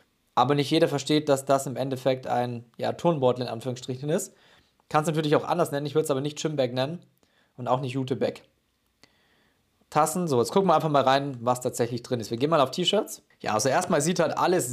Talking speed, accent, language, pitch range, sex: 220 wpm, German, German, 130-165 Hz, male